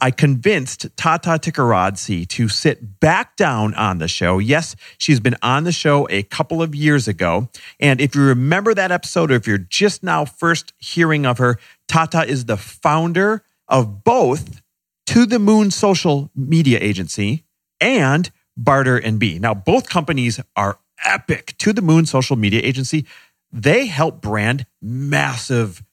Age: 40-59